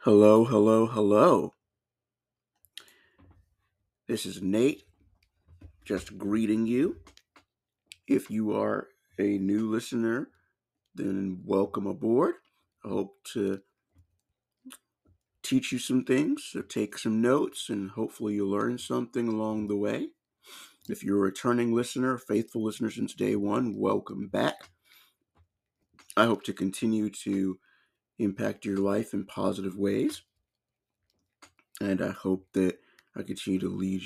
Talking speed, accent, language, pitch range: 120 wpm, American, English, 95-110 Hz